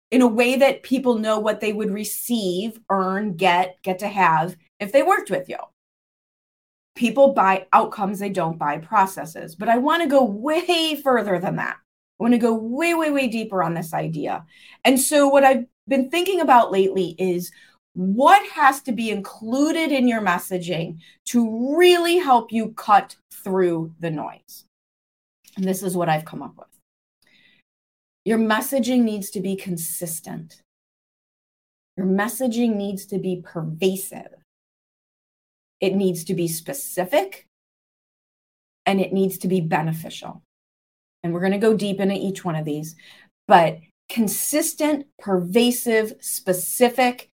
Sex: female